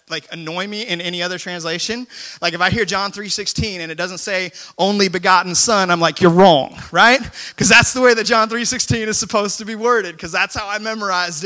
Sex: male